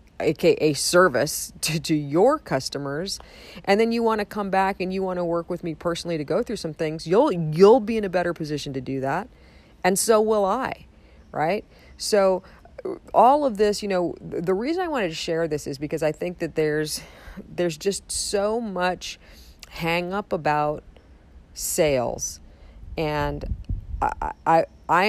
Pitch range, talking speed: 145-190 Hz, 170 wpm